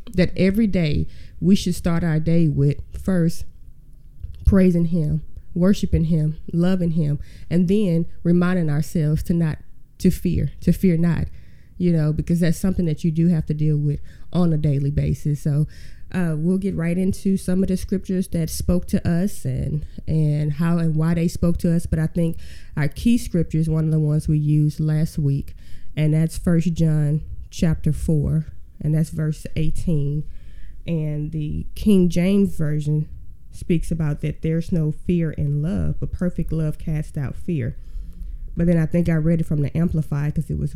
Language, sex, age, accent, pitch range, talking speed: English, female, 20-39, American, 150-175 Hz, 180 wpm